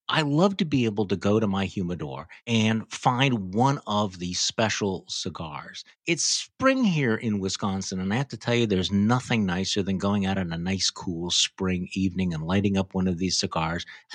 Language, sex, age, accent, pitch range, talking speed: English, male, 50-69, American, 100-155 Hz, 205 wpm